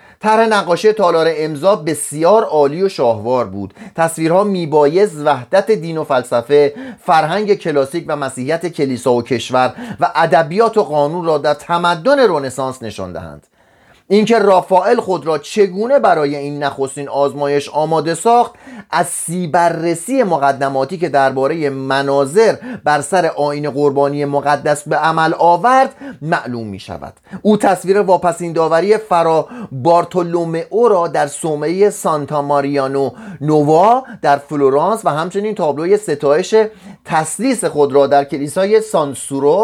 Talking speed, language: 125 wpm, Persian